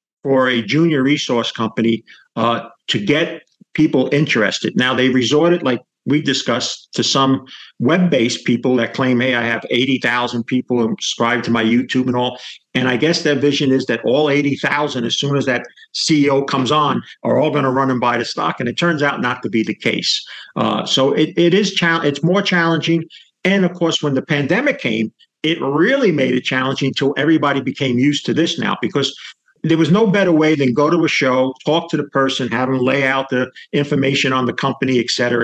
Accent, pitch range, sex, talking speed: American, 125-150 Hz, male, 200 wpm